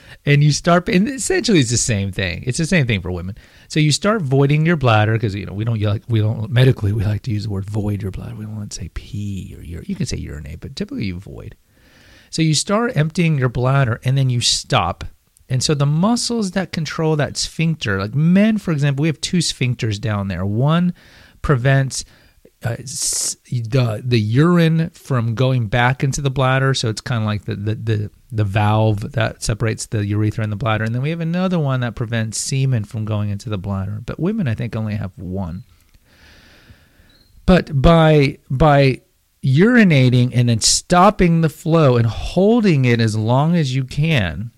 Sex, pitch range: male, 105-150 Hz